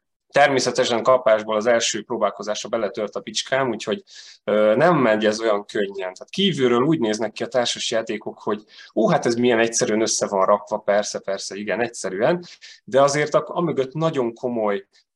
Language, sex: Hungarian, male